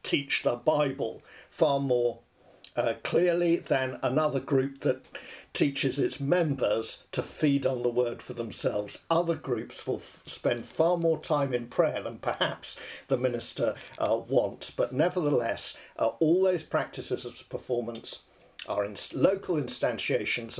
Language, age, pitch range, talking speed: English, 50-69, 120-155 Hz, 145 wpm